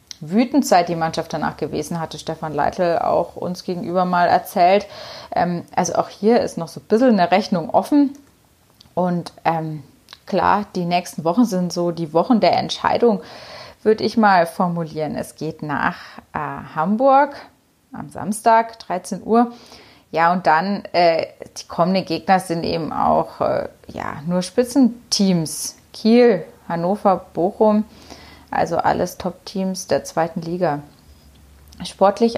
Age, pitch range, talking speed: 30-49, 165-225 Hz, 140 wpm